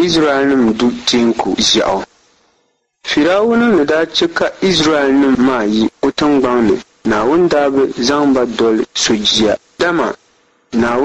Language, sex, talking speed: English, male, 85 wpm